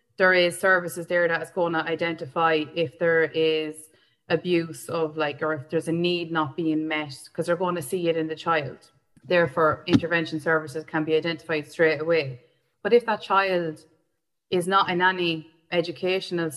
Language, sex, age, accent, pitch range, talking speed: English, female, 20-39, Irish, 160-180 Hz, 180 wpm